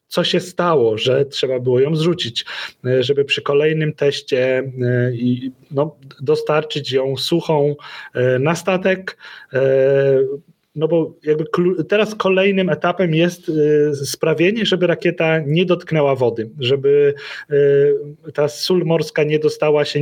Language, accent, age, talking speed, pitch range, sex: Polish, native, 30-49, 110 wpm, 140-165 Hz, male